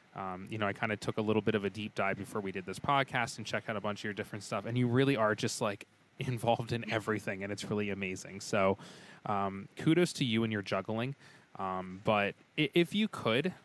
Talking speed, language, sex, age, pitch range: 240 wpm, English, male, 20-39, 105-130 Hz